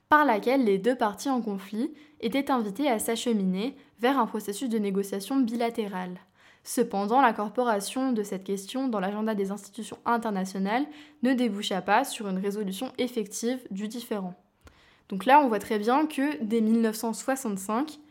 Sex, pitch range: female, 210-260 Hz